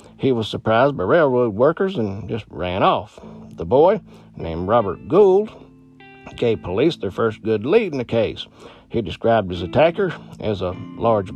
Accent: American